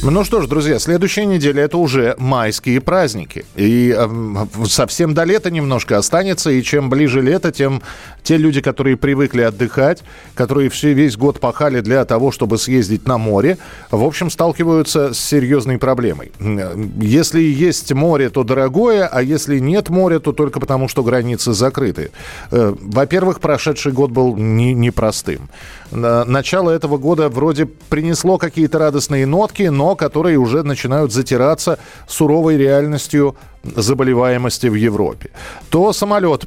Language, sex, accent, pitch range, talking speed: Russian, male, native, 125-155 Hz, 140 wpm